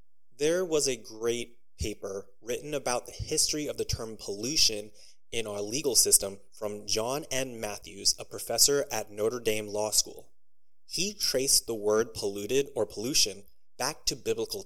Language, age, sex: English, 30-49, male